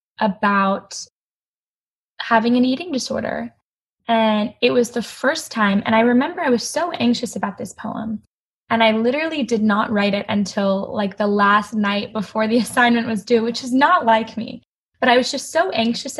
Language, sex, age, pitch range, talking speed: English, female, 10-29, 215-255 Hz, 180 wpm